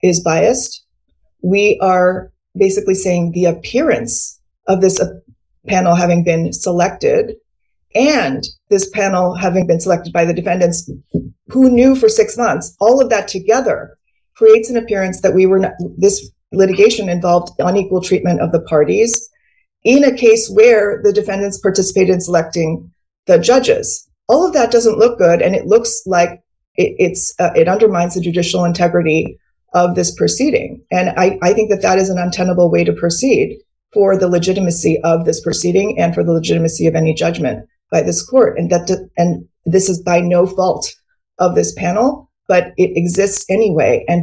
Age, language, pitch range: 30-49, English, 170-205 Hz